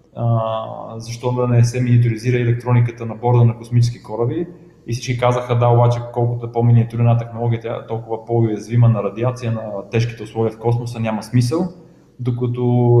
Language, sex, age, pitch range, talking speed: Bulgarian, male, 20-39, 115-125 Hz, 160 wpm